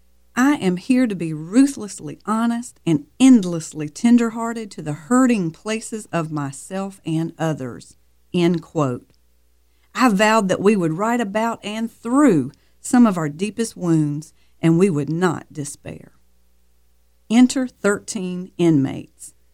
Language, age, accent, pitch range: English, 50-69, American, 145-220 Hz